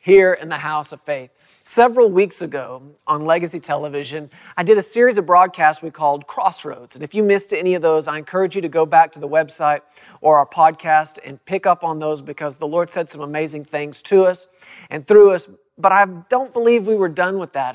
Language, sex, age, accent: English, male, 40-59, American